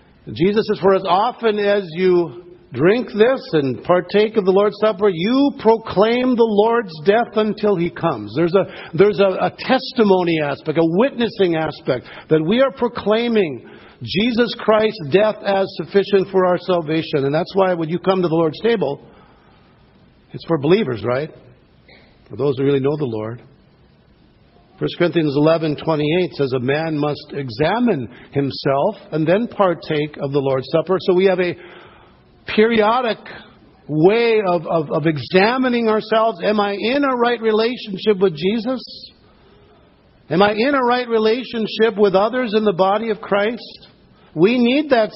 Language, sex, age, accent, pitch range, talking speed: English, male, 60-79, American, 160-220 Hz, 155 wpm